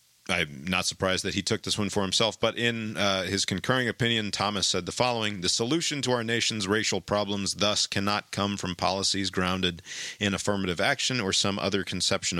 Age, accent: 40-59, American